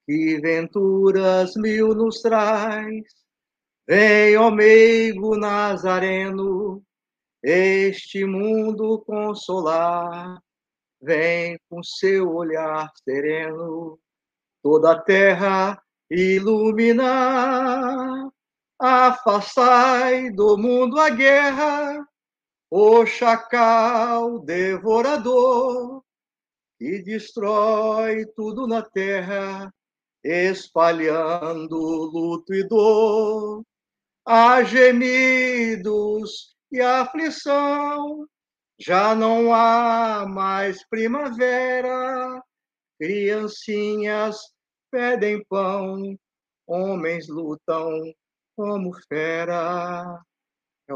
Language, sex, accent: English, male, Brazilian